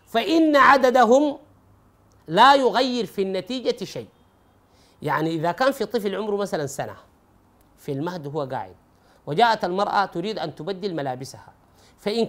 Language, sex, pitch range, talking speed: Arabic, male, 160-245 Hz, 125 wpm